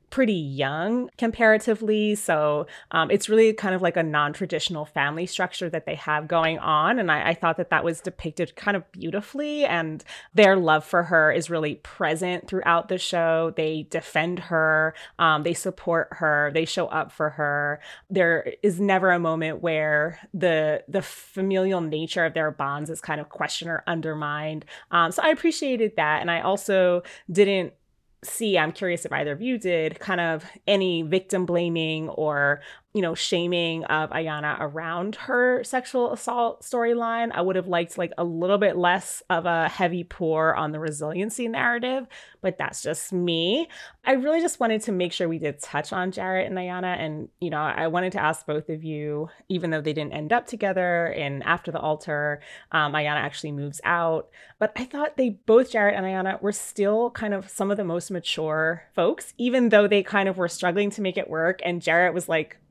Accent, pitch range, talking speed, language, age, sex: American, 155-200 Hz, 190 wpm, English, 30-49, female